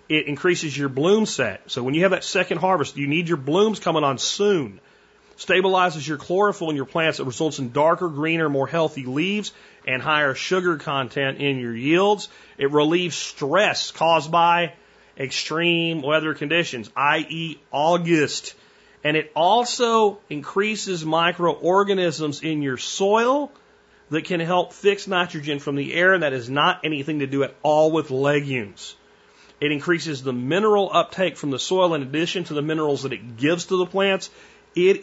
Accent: American